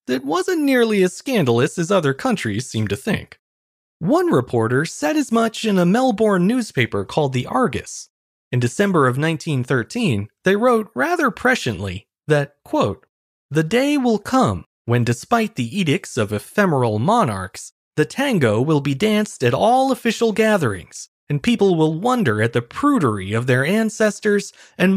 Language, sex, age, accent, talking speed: English, male, 30-49, American, 155 wpm